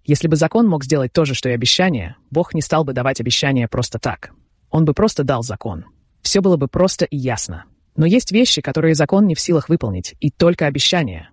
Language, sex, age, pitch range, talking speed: Russian, female, 20-39, 125-165 Hz, 215 wpm